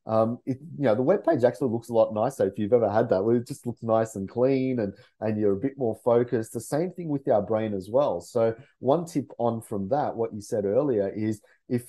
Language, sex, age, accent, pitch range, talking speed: English, male, 30-49, Australian, 105-130 Hz, 250 wpm